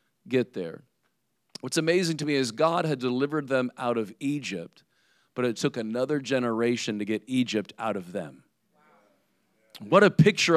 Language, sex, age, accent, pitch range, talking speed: English, male, 40-59, American, 130-180 Hz, 160 wpm